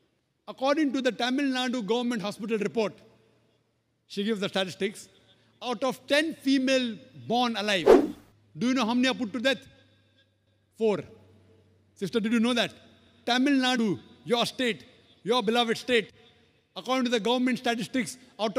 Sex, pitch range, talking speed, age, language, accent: male, 200-260 Hz, 150 wpm, 50-69, English, Indian